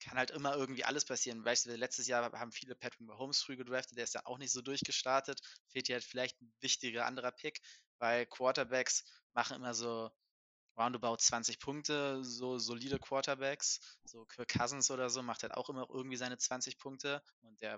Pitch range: 115-135 Hz